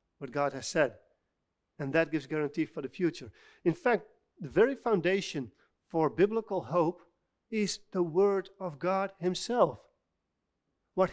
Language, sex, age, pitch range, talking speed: English, male, 40-59, 160-210 Hz, 140 wpm